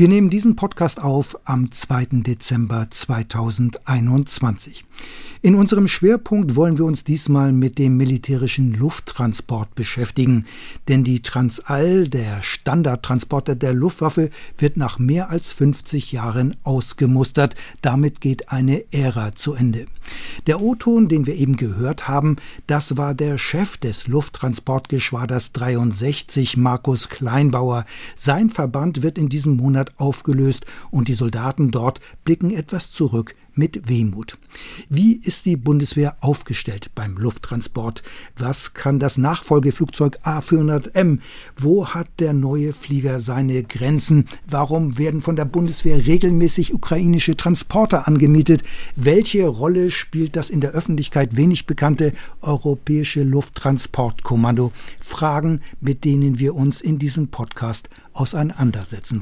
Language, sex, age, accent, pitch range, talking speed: German, male, 60-79, German, 125-160 Hz, 125 wpm